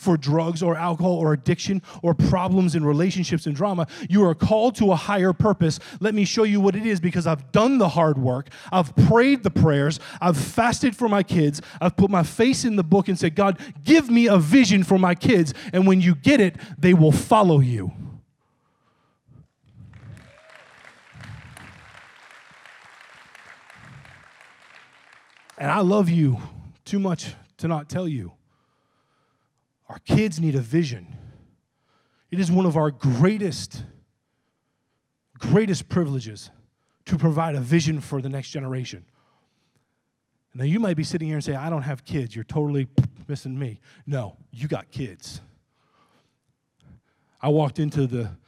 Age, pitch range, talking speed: 30-49, 135-190 Hz, 150 wpm